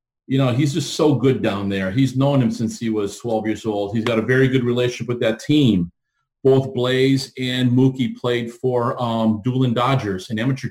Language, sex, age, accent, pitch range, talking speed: English, male, 40-59, American, 115-130 Hz, 205 wpm